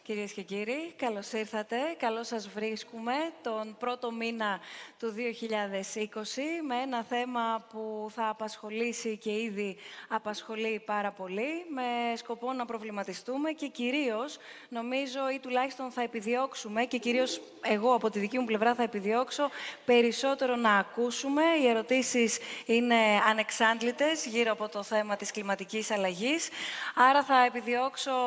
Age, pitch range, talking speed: 20-39, 220-255 Hz, 130 wpm